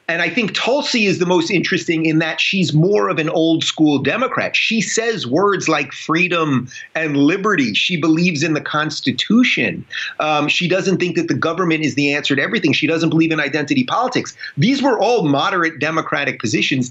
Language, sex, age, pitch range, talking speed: English, male, 30-49, 125-170 Hz, 190 wpm